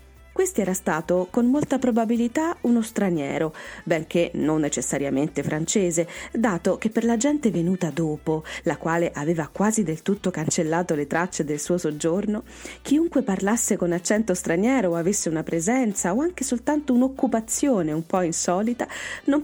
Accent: native